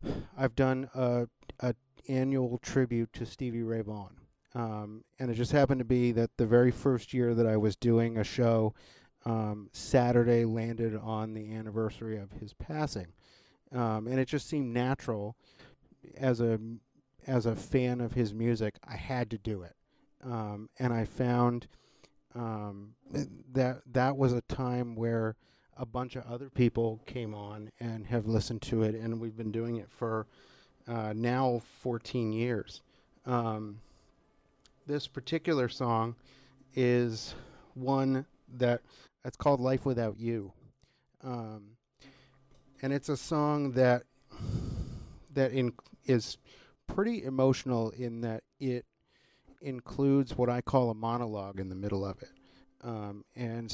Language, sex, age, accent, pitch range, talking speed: English, male, 40-59, American, 110-130 Hz, 145 wpm